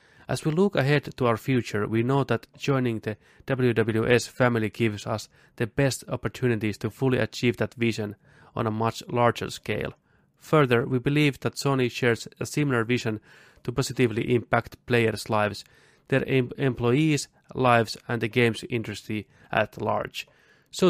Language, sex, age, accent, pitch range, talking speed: Finnish, male, 30-49, native, 110-130 Hz, 150 wpm